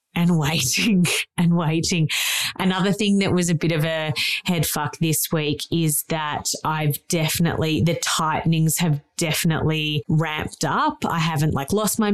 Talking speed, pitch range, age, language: 155 wpm, 155-185 Hz, 20-39, English